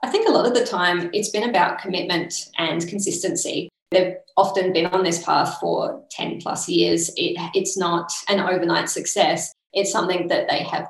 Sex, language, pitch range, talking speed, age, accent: female, English, 170-195 Hz, 185 wpm, 20-39, Australian